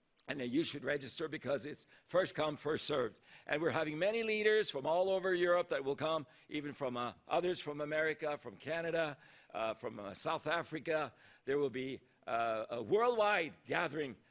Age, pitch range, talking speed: 60-79, 145-175 Hz, 180 wpm